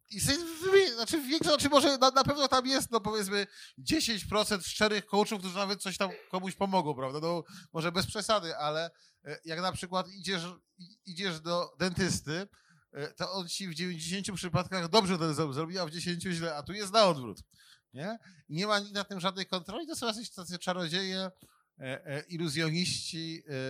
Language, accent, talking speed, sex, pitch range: Polish, native, 165 wpm, male, 160-200 Hz